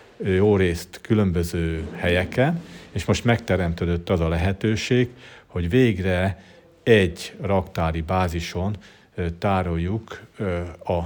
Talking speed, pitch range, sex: 90 wpm, 85-100 Hz, male